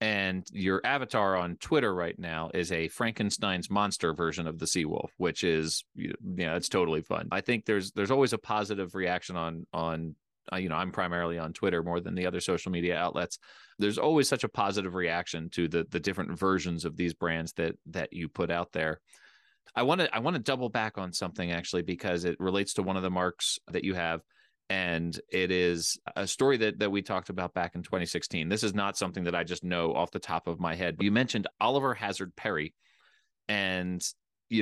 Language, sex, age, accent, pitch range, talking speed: English, male, 30-49, American, 85-100 Hz, 210 wpm